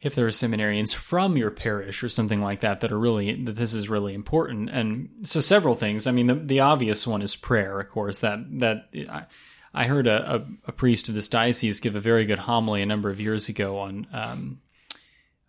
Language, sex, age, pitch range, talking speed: English, male, 30-49, 105-135 Hz, 225 wpm